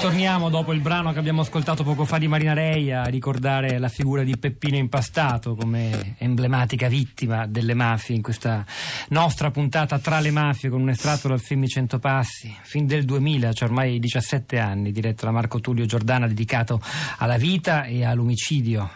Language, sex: Italian, male